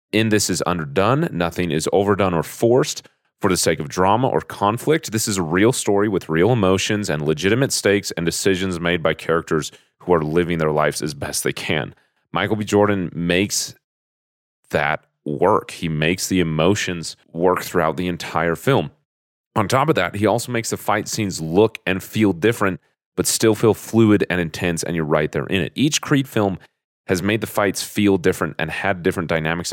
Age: 30-49